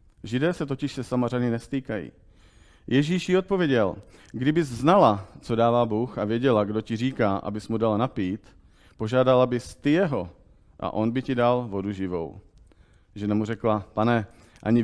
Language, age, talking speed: Czech, 40-59, 160 wpm